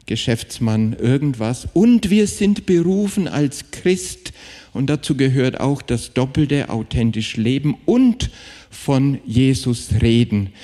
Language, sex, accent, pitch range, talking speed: German, male, German, 115-150 Hz, 115 wpm